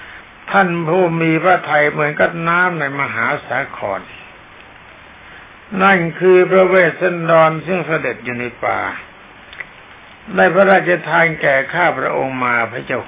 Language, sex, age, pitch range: Thai, male, 60-79, 130-170 Hz